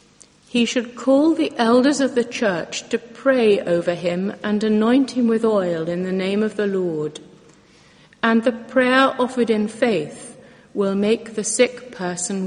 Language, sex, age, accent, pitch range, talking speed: English, female, 60-79, British, 175-225 Hz, 165 wpm